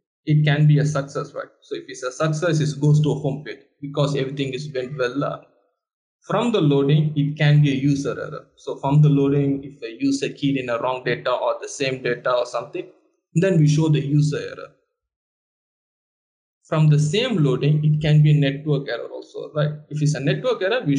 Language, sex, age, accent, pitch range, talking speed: English, male, 20-39, Indian, 135-150 Hz, 210 wpm